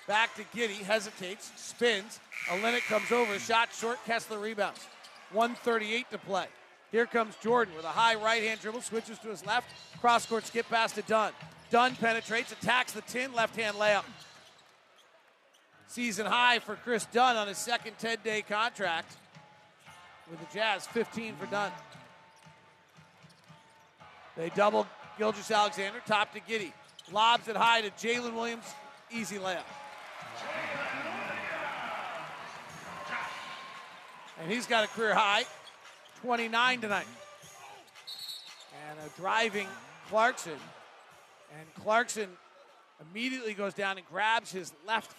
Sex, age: male, 40-59